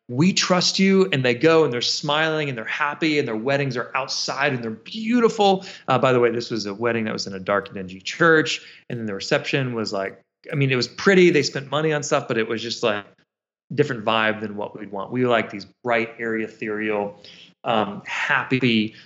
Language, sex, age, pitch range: English, male, 30-49, 115-150 Hz